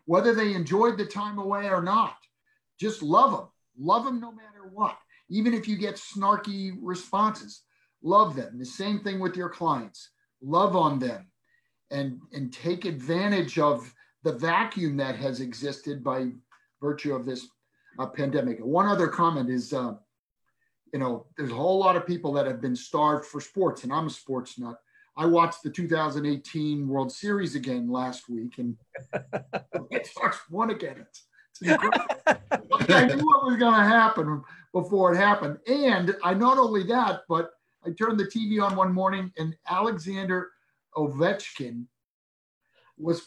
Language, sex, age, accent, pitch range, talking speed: English, male, 40-59, American, 145-205 Hz, 160 wpm